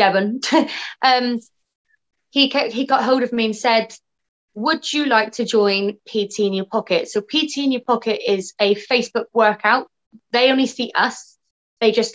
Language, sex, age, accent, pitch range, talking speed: English, female, 20-39, British, 200-250 Hz, 170 wpm